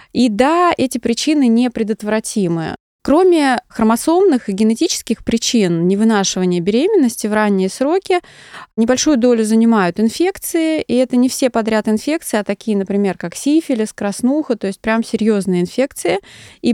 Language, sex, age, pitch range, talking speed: Russian, female, 20-39, 200-260 Hz, 135 wpm